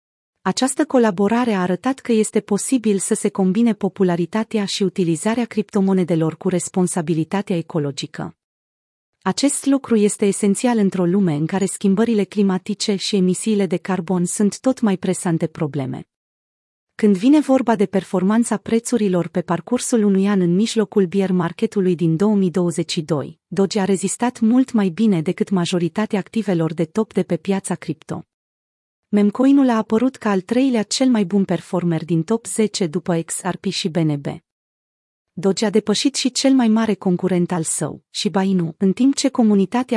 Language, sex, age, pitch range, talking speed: Romanian, female, 30-49, 180-220 Hz, 150 wpm